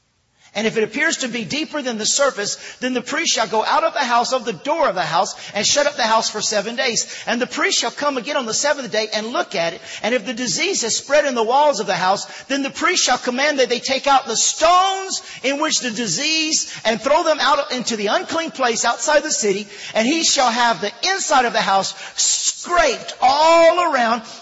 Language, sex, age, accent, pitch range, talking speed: English, male, 50-69, American, 190-265 Hz, 240 wpm